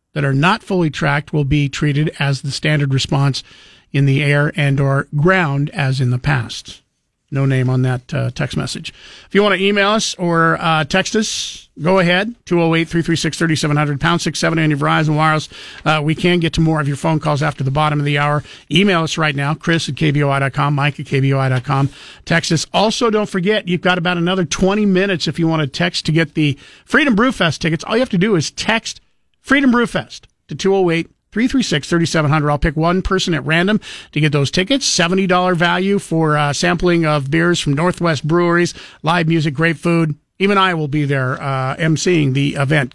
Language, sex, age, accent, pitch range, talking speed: English, male, 50-69, American, 145-185 Hz, 200 wpm